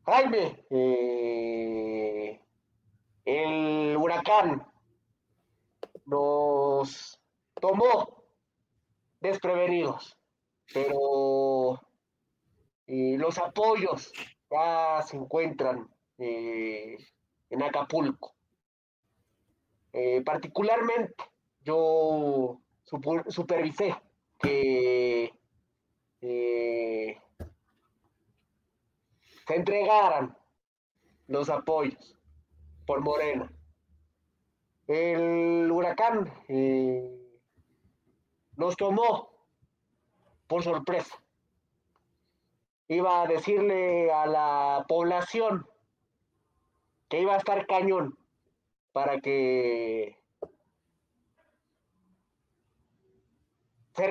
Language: Spanish